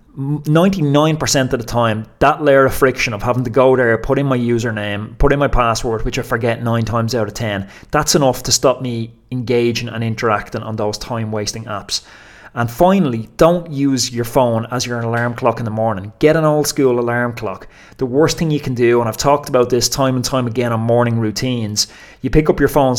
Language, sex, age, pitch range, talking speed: English, male, 30-49, 120-150 Hz, 215 wpm